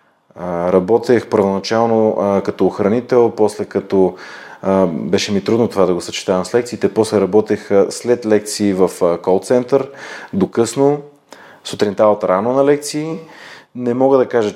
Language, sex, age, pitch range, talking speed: Bulgarian, male, 30-49, 95-125 Hz, 130 wpm